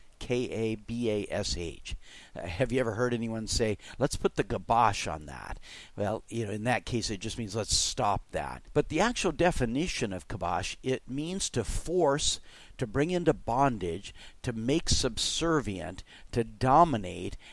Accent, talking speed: American, 155 wpm